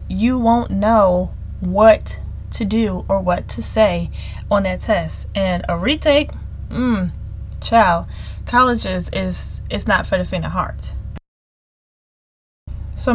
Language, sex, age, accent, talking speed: English, female, 10-29, American, 130 wpm